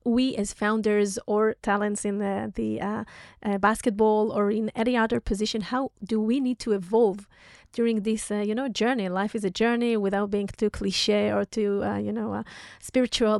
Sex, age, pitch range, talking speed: female, 30-49, 205-230 Hz, 195 wpm